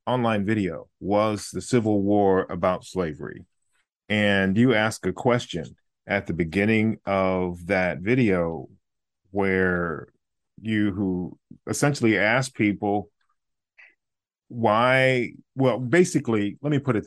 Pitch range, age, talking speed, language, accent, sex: 95-110 Hz, 40-59, 115 wpm, English, American, male